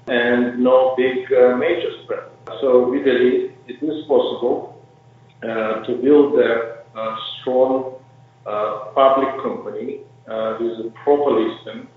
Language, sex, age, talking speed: English, male, 50-69, 130 wpm